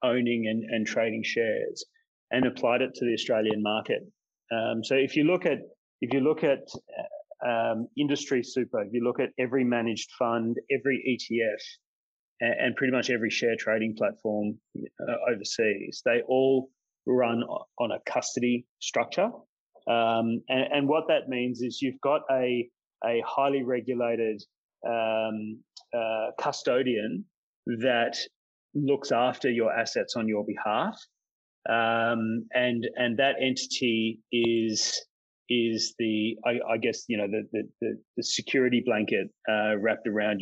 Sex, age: male, 30-49